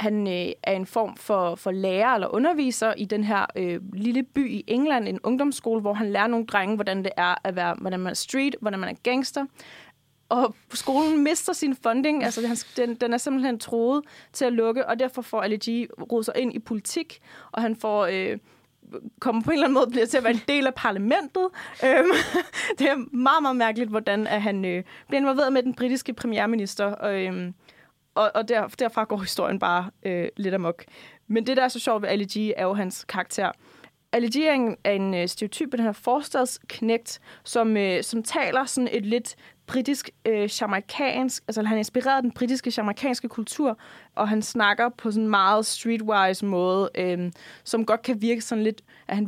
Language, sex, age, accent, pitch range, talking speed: Danish, female, 20-39, native, 205-255 Hz, 195 wpm